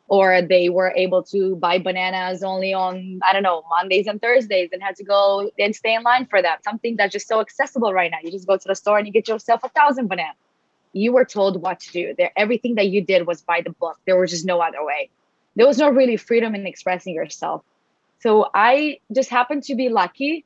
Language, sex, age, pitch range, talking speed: English, female, 20-39, 185-240 Hz, 235 wpm